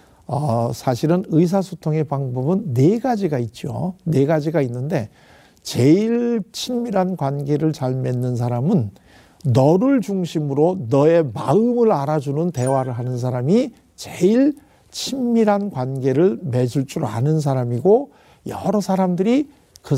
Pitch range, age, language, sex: 140-200 Hz, 60-79, Korean, male